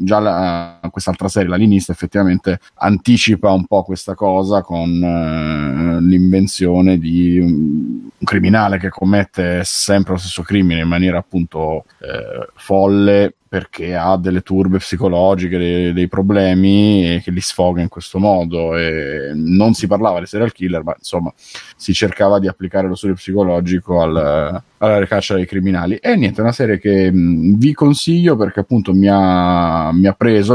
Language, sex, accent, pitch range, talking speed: Italian, male, native, 90-100 Hz, 160 wpm